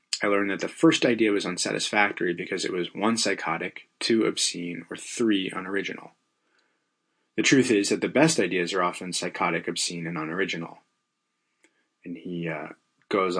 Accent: American